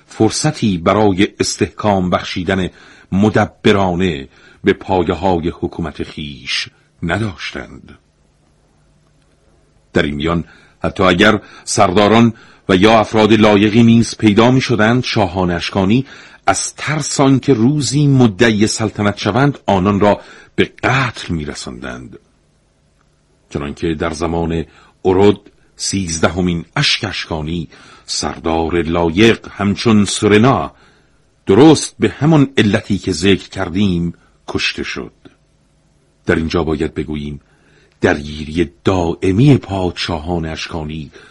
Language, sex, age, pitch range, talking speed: Persian, male, 50-69, 85-110 Hz, 95 wpm